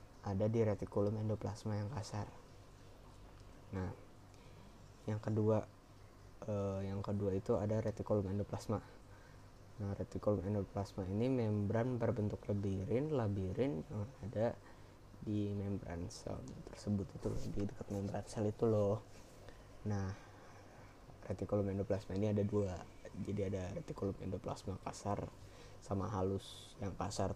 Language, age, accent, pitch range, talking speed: Indonesian, 20-39, native, 100-110 Hz, 115 wpm